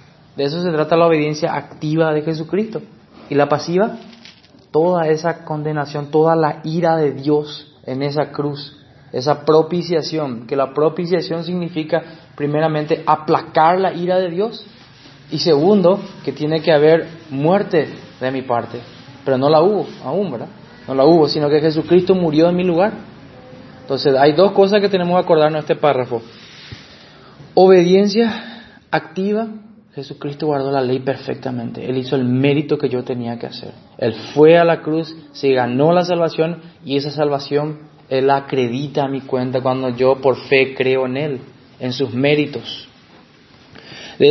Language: Spanish